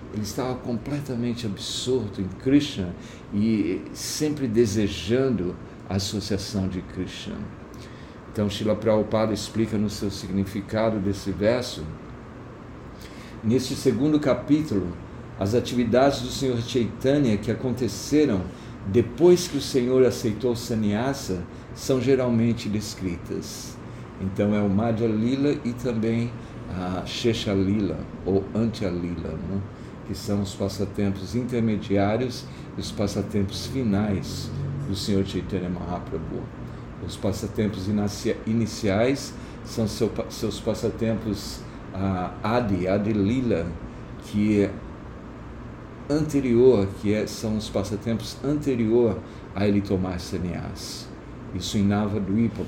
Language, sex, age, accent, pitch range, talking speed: Portuguese, male, 60-79, Brazilian, 100-120 Hz, 110 wpm